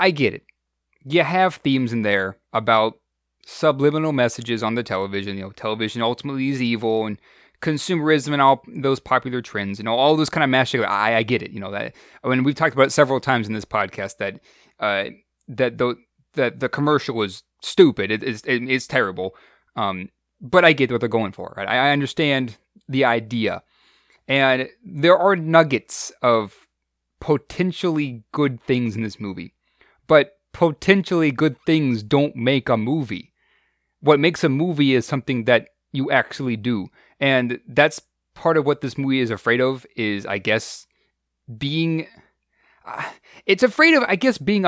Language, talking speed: English, 170 wpm